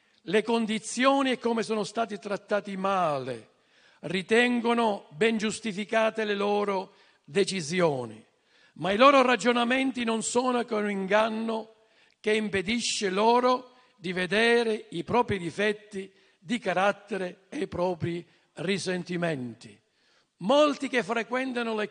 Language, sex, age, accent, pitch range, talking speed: Italian, male, 50-69, native, 180-230 Hz, 110 wpm